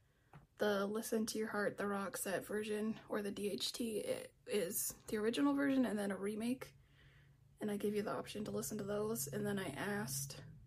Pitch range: 200-245 Hz